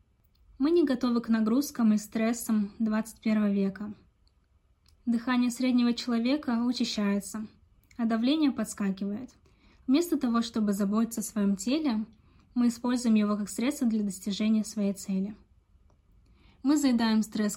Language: Russian